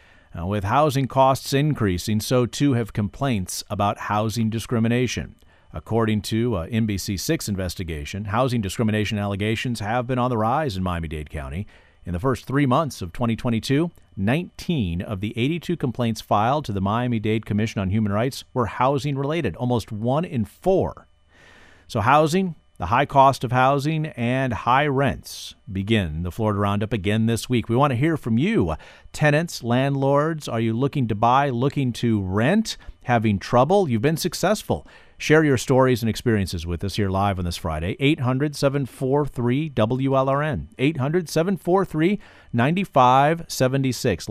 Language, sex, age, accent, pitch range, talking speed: English, male, 40-59, American, 100-140 Hz, 140 wpm